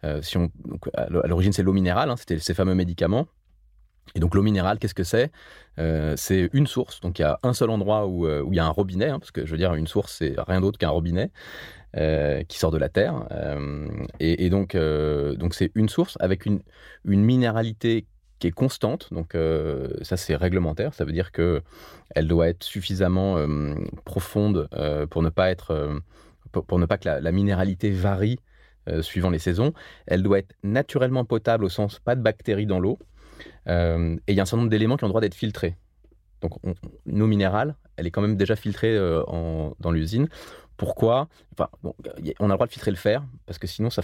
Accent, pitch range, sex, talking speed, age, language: French, 80-105 Hz, male, 220 wpm, 30-49, French